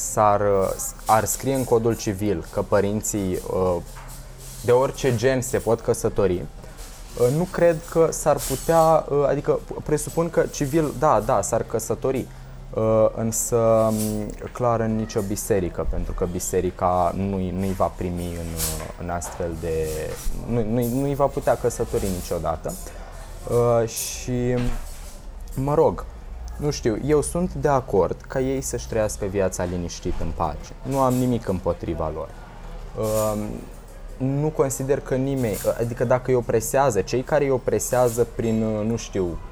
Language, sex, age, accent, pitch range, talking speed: Romanian, male, 20-39, native, 90-125 Hz, 130 wpm